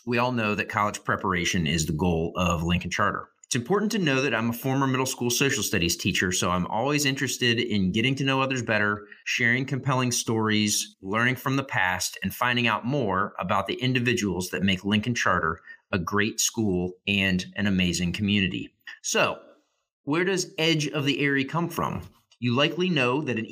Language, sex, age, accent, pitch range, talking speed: English, male, 30-49, American, 95-135 Hz, 190 wpm